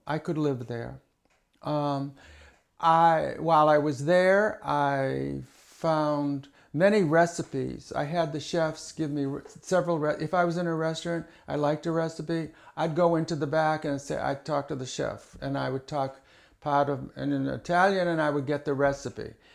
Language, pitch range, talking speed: English, 135-165 Hz, 180 wpm